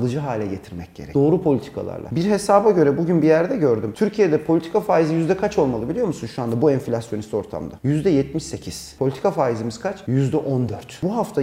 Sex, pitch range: male, 140-200 Hz